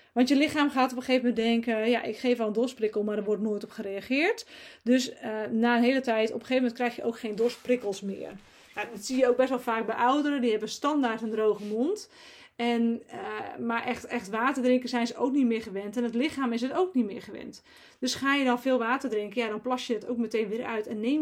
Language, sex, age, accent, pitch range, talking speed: Dutch, female, 30-49, Dutch, 225-275 Hz, 265 wpm